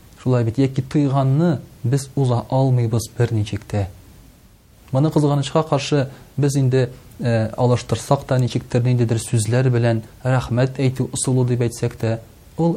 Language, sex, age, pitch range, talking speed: Russian, male, 40-59, 110-140 Hz, 135 wpm